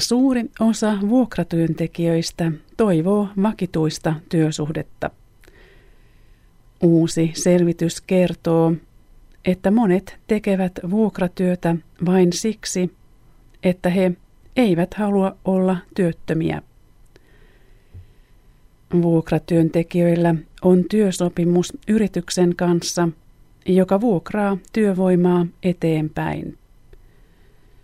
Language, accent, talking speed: Finnish, native, 65 wpm